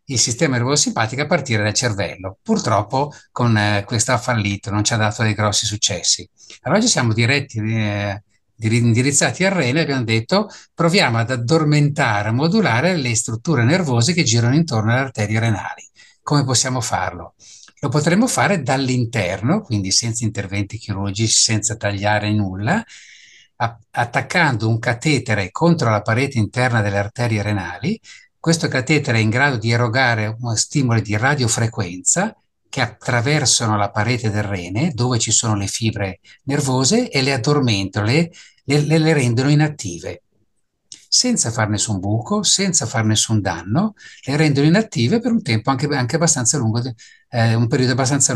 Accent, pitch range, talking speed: native, 105-145 Hz, 155 wpm